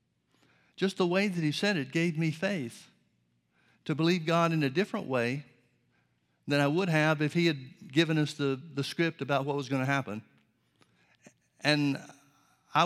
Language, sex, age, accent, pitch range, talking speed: English, male, 60-79, American, 125-150 Hz, 175 wpm